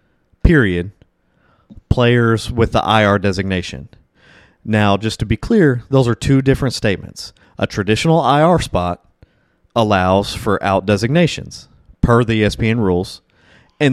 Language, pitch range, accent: English, 100-135 Hz, American